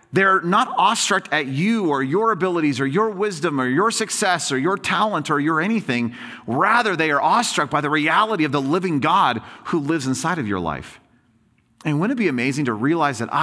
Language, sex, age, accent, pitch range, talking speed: English, male, 40-59, American, 120-180 Hz, 200 wpm